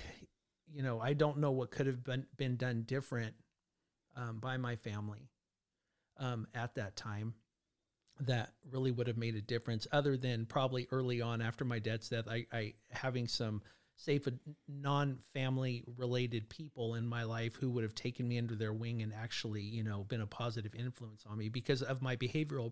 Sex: male